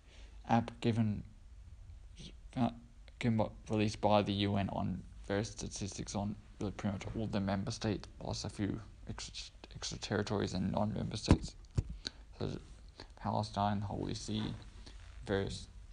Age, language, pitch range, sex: 20-39, English, 80-105 Hz, male